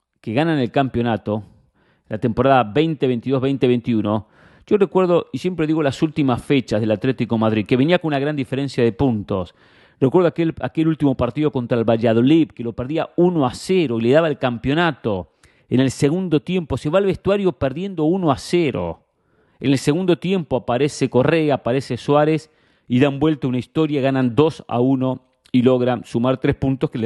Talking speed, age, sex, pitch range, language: 180 wpm, 40-59, male, 120-155 Hz, English